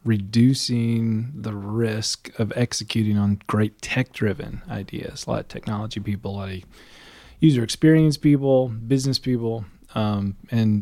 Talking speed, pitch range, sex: 135 wpm, 105-120 Hz, male